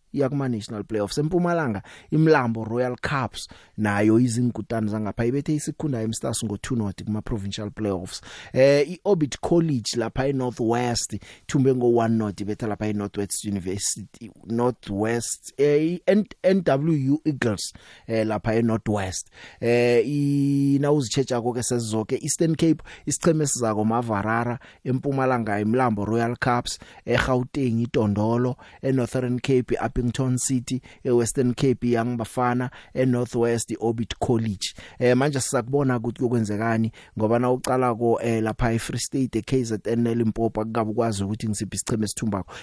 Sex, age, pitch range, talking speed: male, 30-49, 110-130 Hz, 120 wpm